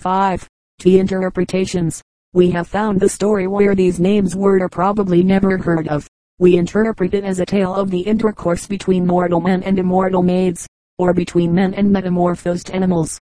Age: 30-49